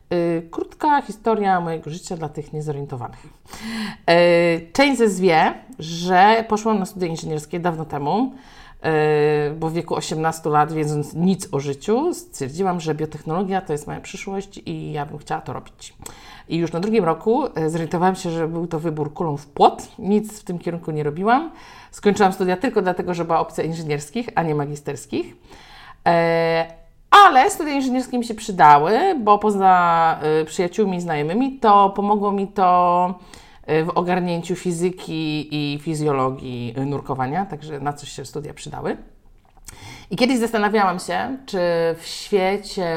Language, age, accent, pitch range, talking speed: Polish, 50-69, native, 150-220 Hz, 150 wpm